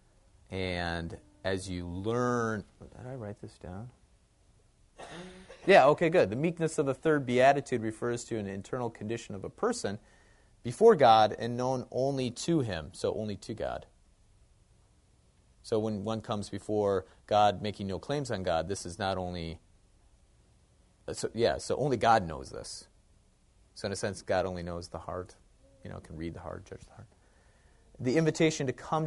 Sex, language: male, English